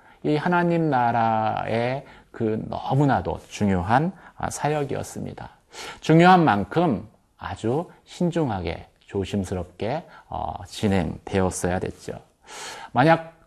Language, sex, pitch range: Korean, male, 95-145 Hz